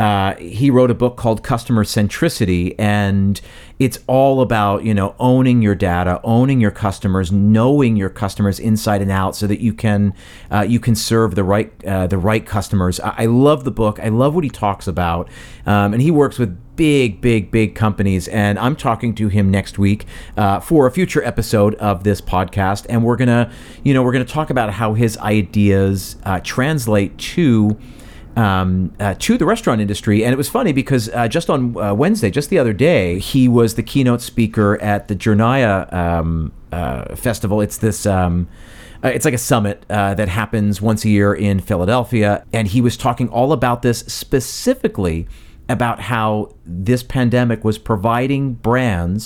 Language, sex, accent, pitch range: English, male, American, 100-120 Hz